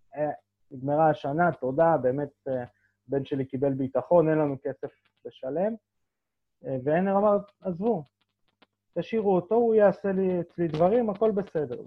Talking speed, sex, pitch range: 130 wpm, male, 125-165 Hz